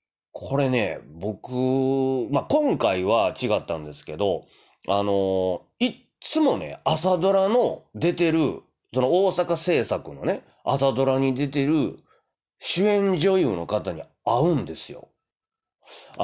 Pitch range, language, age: 105-170 Hz, Japanese, 30-49